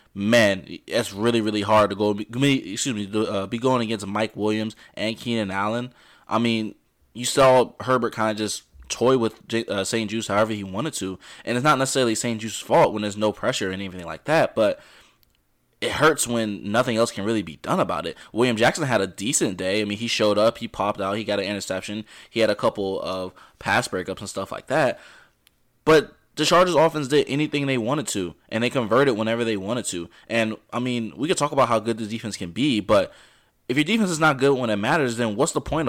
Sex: male